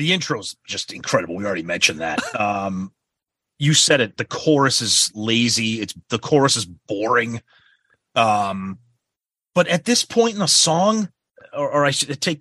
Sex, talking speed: male, 170 wpm